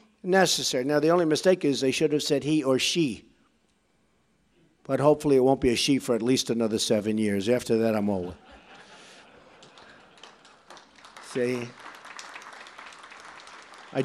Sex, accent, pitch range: male, American, 130-205 Hz